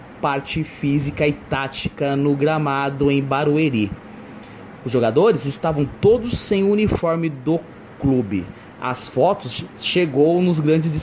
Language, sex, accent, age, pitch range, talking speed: Portuguese, male, Brazilian, 20-39, 140-180 Hz, 120 wpm